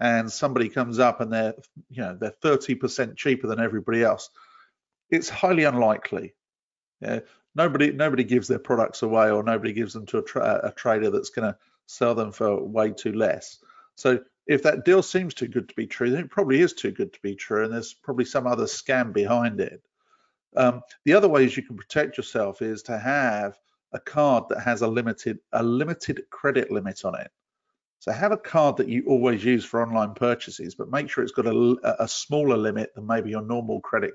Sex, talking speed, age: male, 205 wpm, 50-69